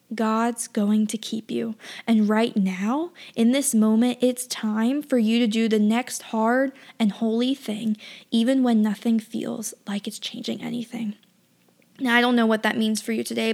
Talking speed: 180 wpm